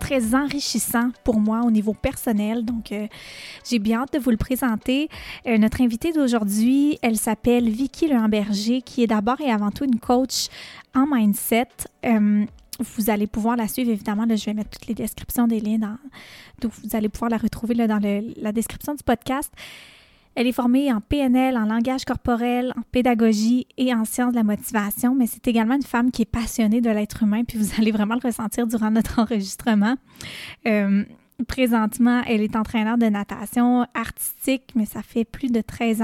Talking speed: 190 wpm